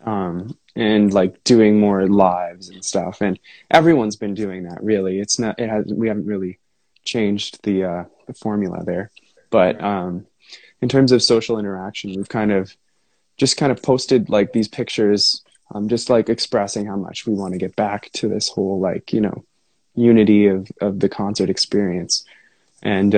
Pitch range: 100-120 Hz